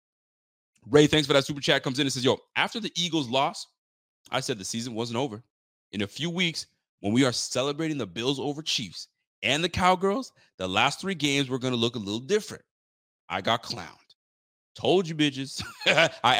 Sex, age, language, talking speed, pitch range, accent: male, 30-49, English, 200 wpm, 110-165 Hz, American